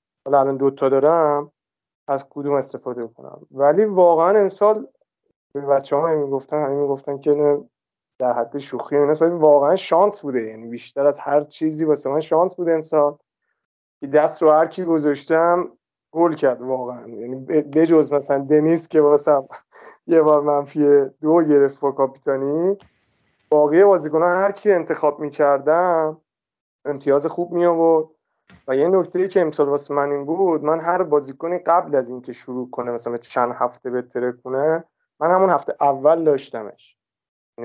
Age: 30-49